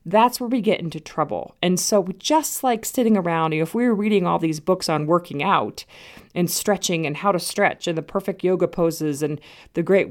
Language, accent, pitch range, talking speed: English, American, 165-215 Hz, 225 wpm